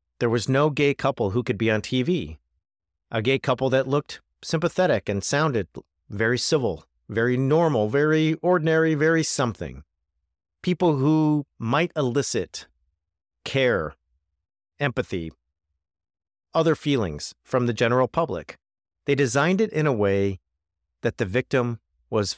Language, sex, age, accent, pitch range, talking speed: English, male, 50-69, American, 85-135 Hz, 130 wpm